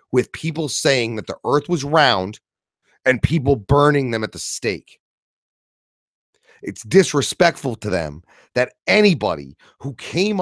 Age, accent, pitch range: 30-49, American, 110-165 Hz